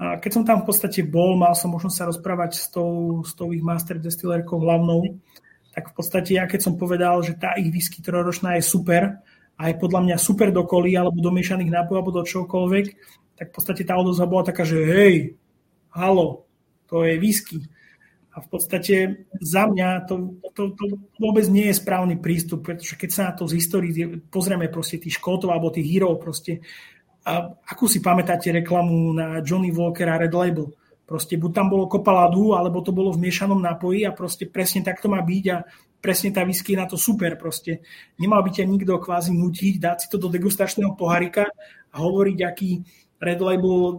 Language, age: Czech, 30-49